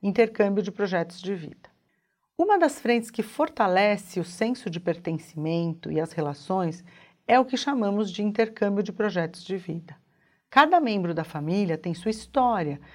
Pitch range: 175-240 Hz